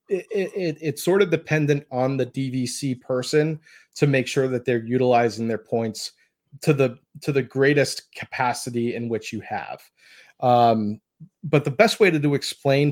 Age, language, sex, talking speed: 30-49, English, male, 160 wpm